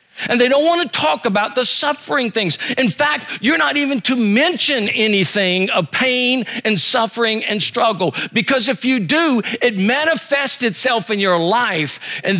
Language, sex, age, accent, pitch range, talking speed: English, male, 50-69, American, 170-235 Hz, 170 wpm